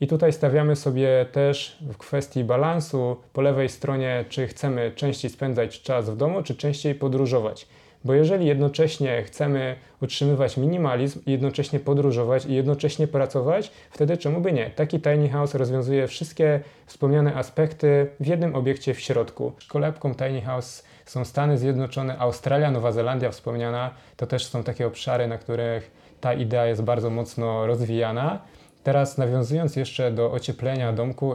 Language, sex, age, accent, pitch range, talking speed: Polish, male, 20-39, native, 125-145 Hz, 145 wpm